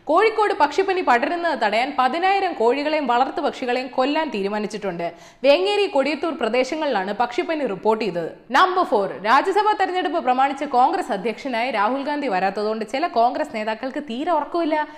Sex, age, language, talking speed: female, 20-39, Malayalam, 125 wpm